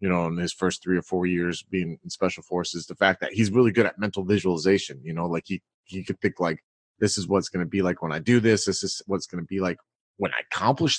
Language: English